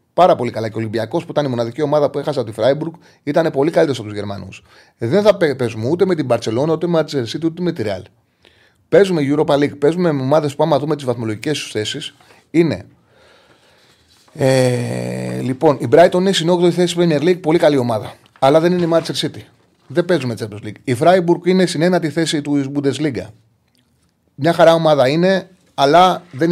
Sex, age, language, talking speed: male, 30-49, Greek, 195 wpm